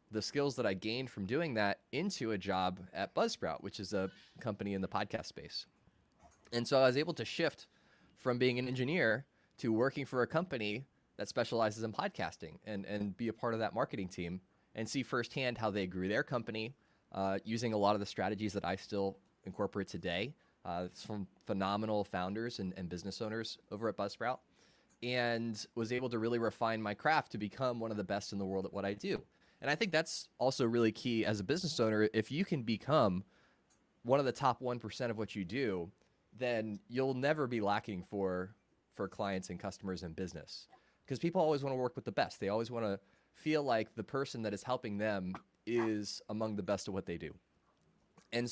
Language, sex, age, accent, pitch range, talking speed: English, male, 20-39, American, 100-125 Hz, 205 wpm